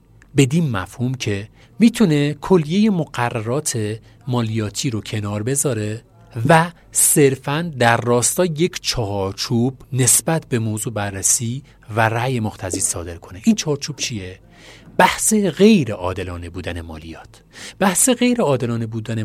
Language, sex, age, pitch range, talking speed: Persian, male, 40-59, 110-150 Hz, 115 wpm